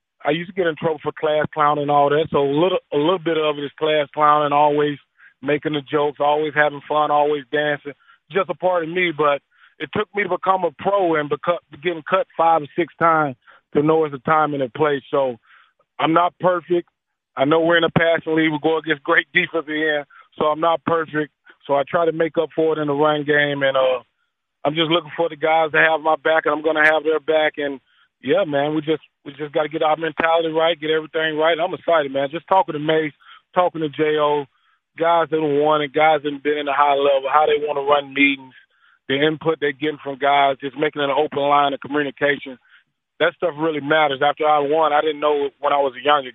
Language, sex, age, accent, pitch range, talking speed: English, male, 20-39, American, 145-160 Hz, 245 wpm